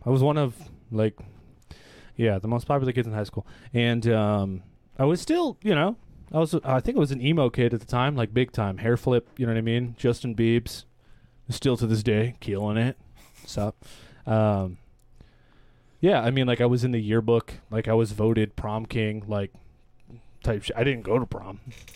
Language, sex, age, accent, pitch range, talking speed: English, male, 20-39, American, 105-125 Hz, 210 wpm